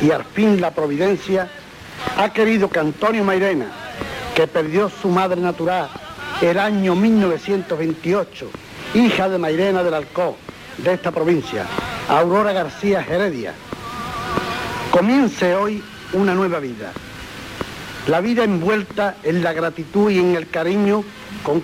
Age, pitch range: 60-79, 170-205 Hz